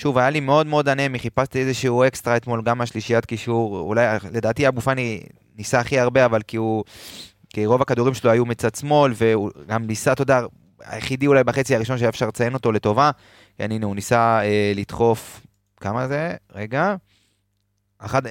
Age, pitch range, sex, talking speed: 20-39, 110-135 Hz, male, 175 wpm